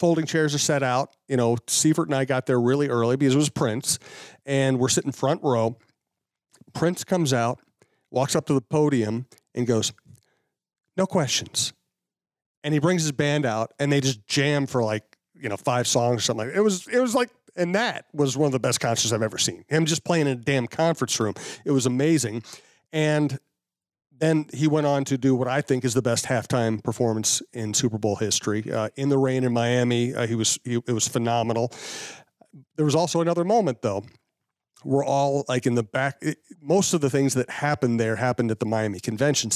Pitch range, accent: 120-150 Hz, American